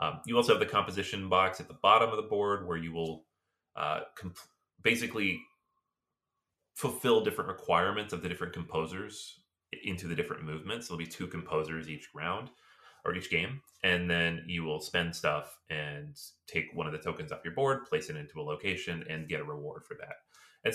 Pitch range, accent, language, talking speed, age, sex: 80-115 Hz, American, English, 190 wpm, 30-49, male